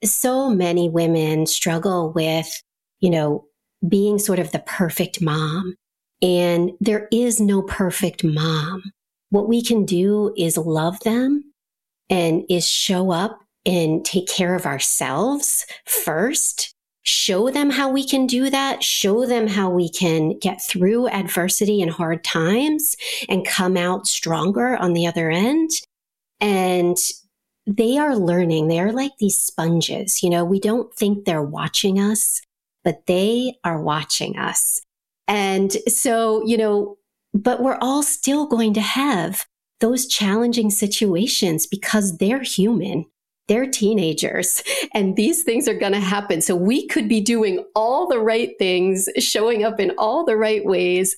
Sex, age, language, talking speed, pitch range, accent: female, 40-59, English, 150 wpm, 180-230 Hz, American